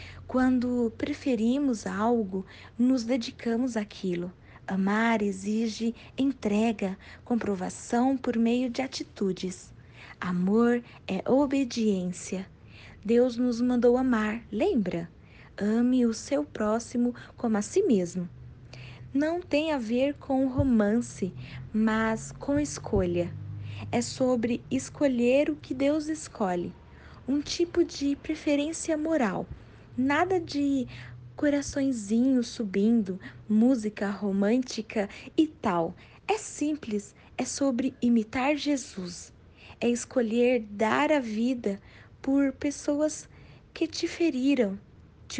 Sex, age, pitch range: female, 20-39, 205-275 Hz